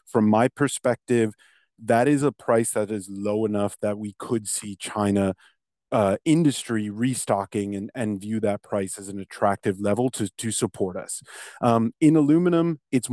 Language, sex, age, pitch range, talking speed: English, male, 30-49, 100-125 Hz, 165 wpm